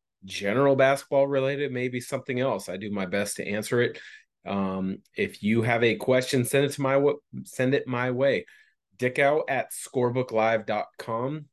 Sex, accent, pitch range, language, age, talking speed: male, American, 105-135 Hz, English, 30-49, 160 wpm